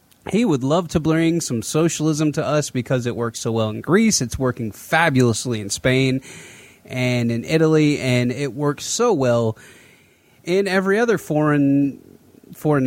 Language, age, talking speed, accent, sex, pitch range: English, 30-49, 160 wpm, American, male, 125-155 Hz